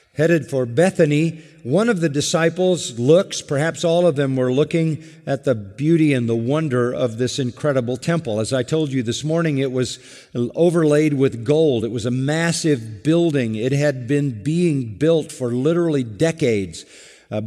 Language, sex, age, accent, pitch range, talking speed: English, male, 50-69, American, 115-150 Hz, 170 wpm